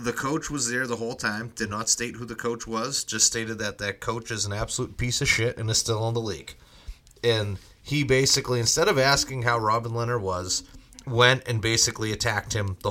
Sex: male